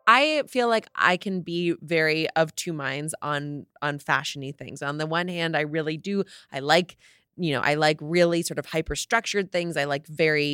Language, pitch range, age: English, 150-190 Hz, 20-39